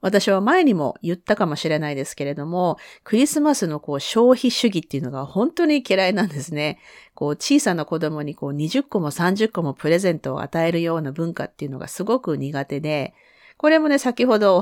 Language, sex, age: Japanese, female, 40-59